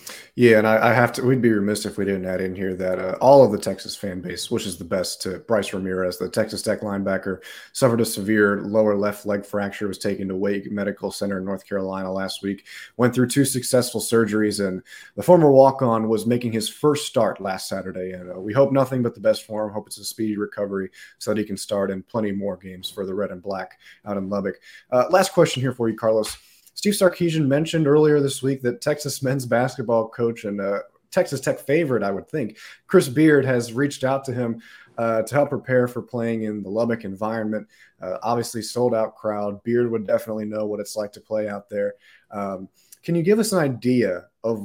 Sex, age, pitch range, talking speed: male, 30-49, 100-125 Hz, 225 wpm